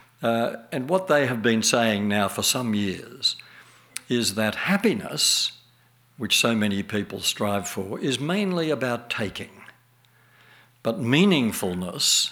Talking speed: 125 wpm